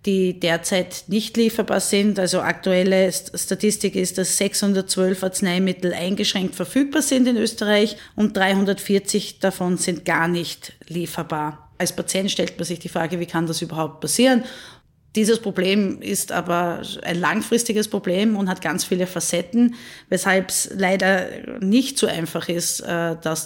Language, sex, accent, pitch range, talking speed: German, female, Austrian, 175-205 Hz, 145 wpm